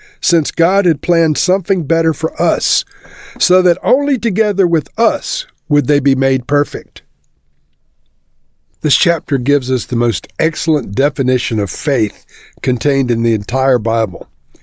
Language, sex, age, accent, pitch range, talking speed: English, male, 50-69, American, 130-185 Hz, 140 wpm